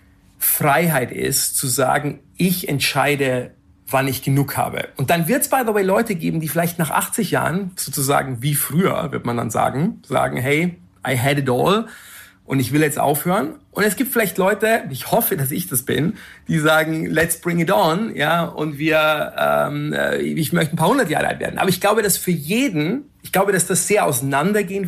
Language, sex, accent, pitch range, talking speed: German, male, German, 135-175 Hz, 200 wpm